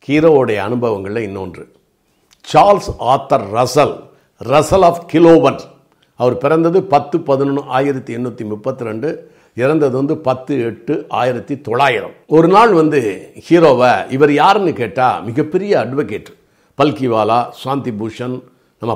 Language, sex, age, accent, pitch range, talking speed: Tamil, male, 50-69, native, 115-150 Hz, 115 wpm